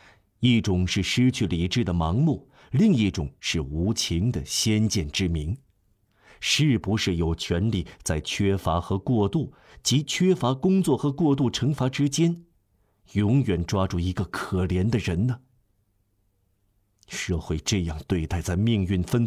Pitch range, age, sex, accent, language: 90-120 Hz, 50-69, male, native, Chinese